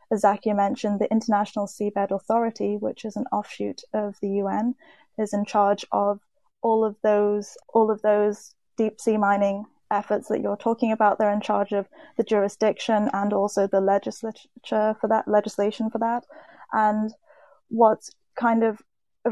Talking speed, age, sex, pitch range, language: 165 wpm, 10-29, female, 200-220 Hz, English